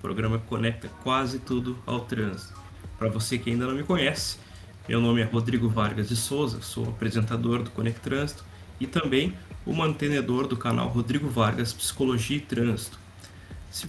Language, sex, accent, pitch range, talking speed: Portuguese, male, Brazilian, 95-125 Hz, 165 wpm